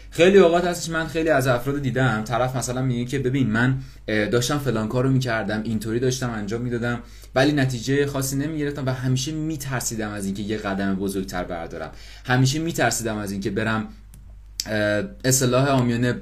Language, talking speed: English, 170 wpm